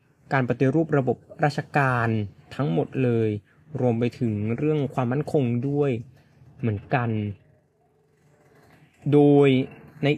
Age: 20-39